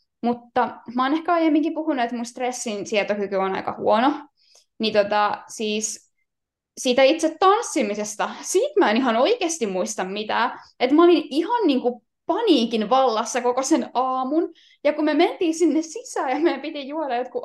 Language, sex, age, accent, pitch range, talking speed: Finnish, female, 10-29, native, 230-315 Hz, 160 wpm